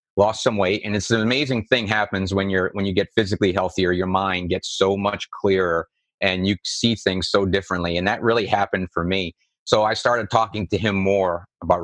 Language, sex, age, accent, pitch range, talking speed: English, male, 30-49, American, 95-115 Hz, 215 wpm